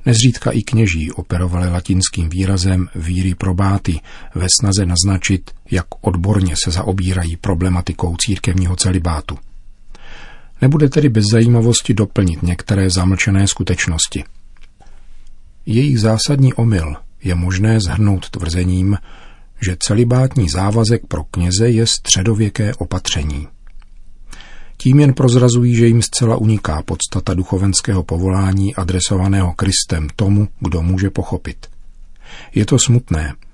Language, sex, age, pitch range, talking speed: Czech, male, 40-59, 90-110 Hz, 110 wpm